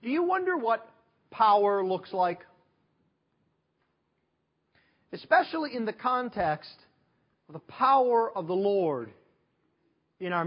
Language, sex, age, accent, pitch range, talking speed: English, male, 40-59, American, 190-265 Hz, 110 wpm